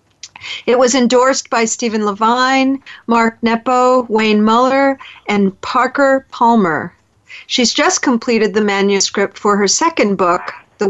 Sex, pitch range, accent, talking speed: female, 200-255 Hz, American, 125 wpm